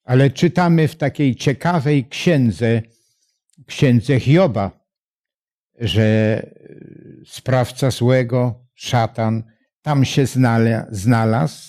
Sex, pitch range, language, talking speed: male, 120-165 Hz, Polish, 75 wpm